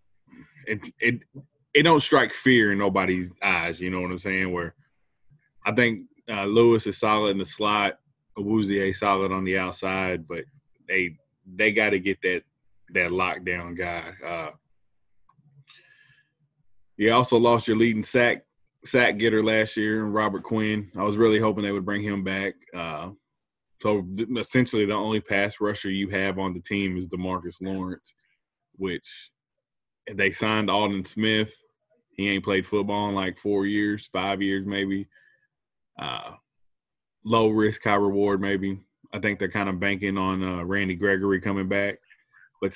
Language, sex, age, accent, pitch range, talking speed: English, male, 20-39, American, 95-115 Hz, 155 wpm